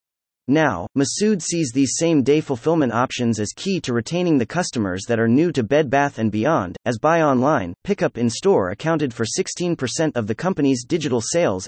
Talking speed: 180 wpm